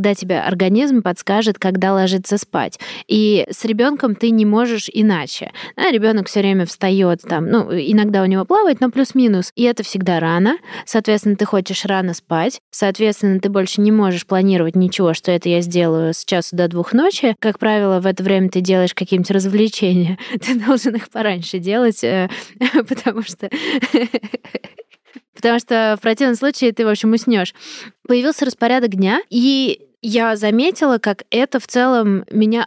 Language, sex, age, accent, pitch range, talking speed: Russian, female, 20-39, native, 190-240 Hz, 165 wpm